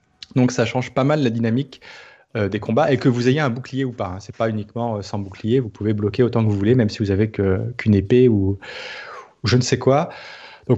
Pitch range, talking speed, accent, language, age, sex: 105-135 Hz, 255 wpm, French, French, 30-49, male